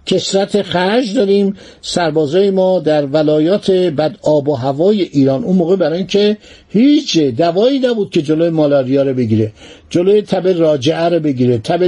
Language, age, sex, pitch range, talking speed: Persian, 60-79, male, 150-210 Hz, 155 wpm